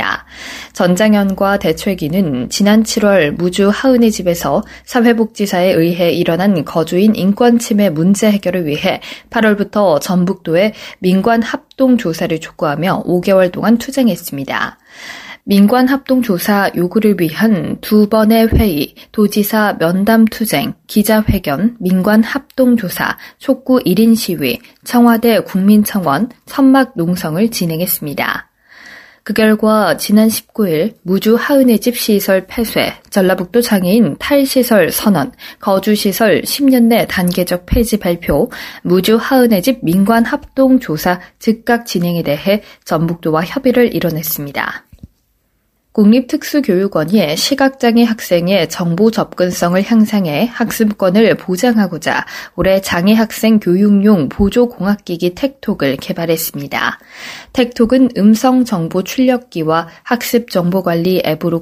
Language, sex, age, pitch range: Korean, female, 20-39, 180-235 Hz